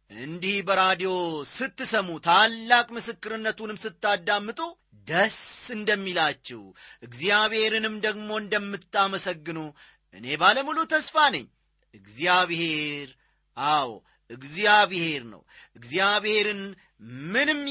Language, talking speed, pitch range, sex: Amharic, 70 wpm, 160-230 Hz, male